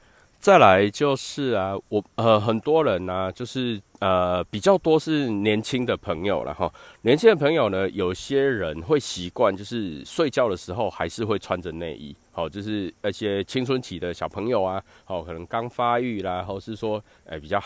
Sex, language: male, Chinese